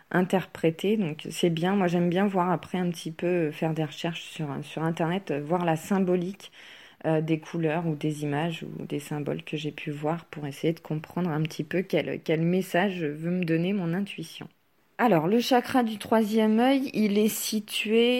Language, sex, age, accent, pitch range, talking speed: French, female, 20-39, French, 160-205 Hz, 200 wpm